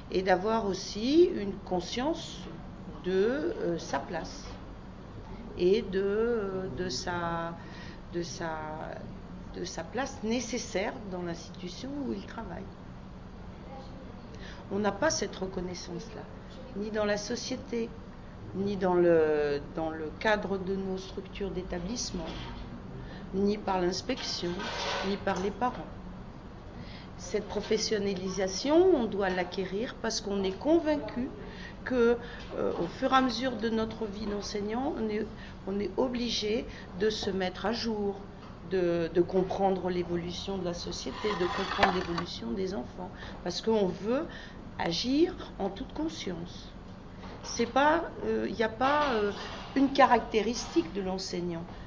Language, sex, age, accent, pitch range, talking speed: French, female, 50-69, French, 185-230 Hz, 120 wpm